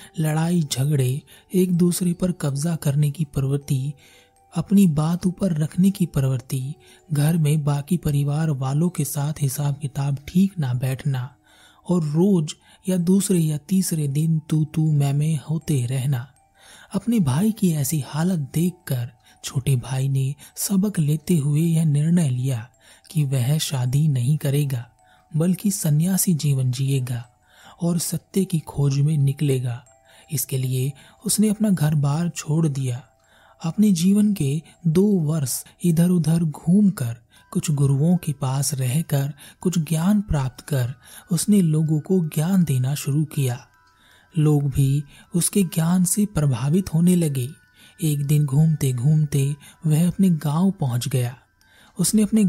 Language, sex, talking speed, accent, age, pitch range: Hindi, male, 140 wpm, native, 30-49, 135-175 Hz